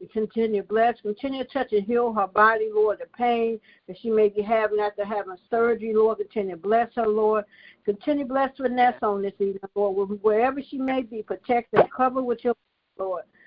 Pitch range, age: 205-235 Hz, 60-79